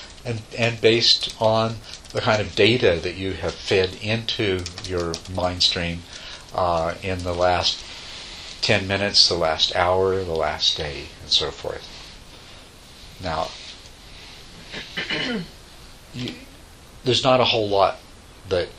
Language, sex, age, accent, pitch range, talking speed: English, male, 50-69, American, 85-110 Hz, 125 wpm